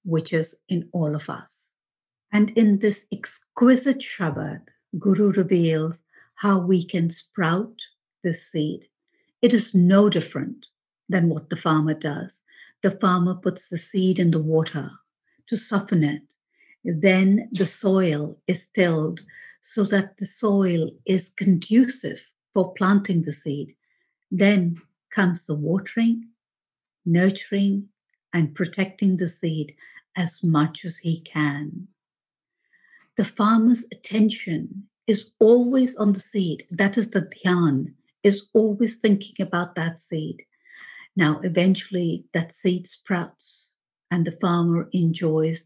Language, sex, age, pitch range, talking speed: English, female, 60-79, 160-200 Hz, 125 wpm